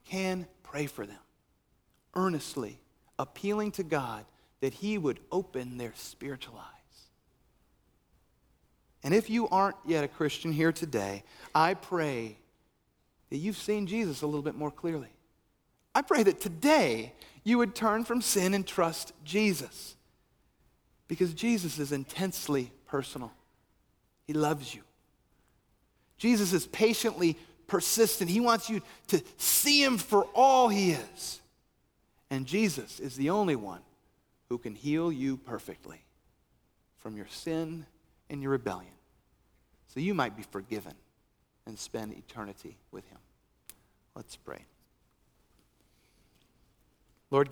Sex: male